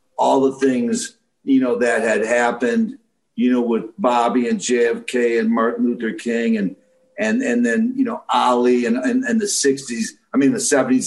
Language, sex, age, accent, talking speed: English, male, 50-69, American, 185 wpm